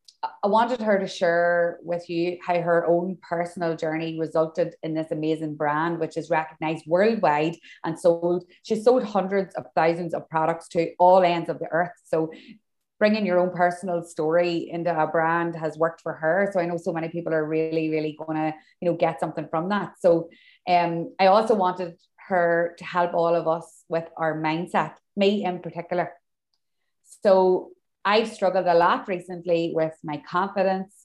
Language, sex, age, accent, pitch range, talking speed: English, female, 20-39, Irish, 160-180 Hz, 180 wpm